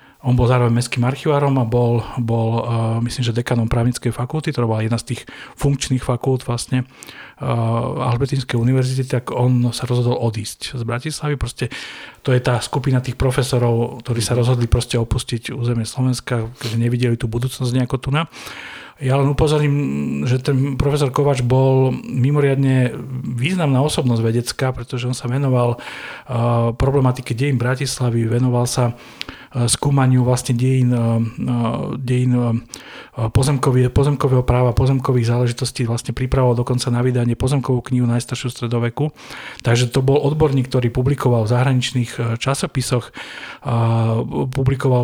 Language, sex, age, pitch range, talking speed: Slovak, male, 40-59, 120-135 Hz, 135 wpm